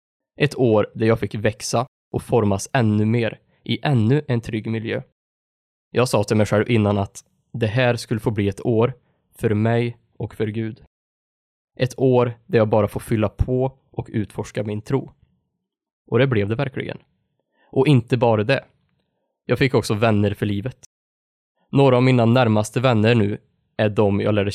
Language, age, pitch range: Swedish, 20-39, 105-125 Hz